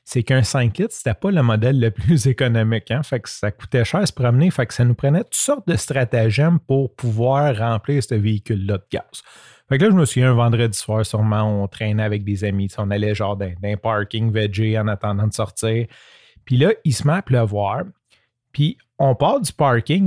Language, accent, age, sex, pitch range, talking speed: French, Canadian, 30-49, male, 110-135 Hz, 225 wpm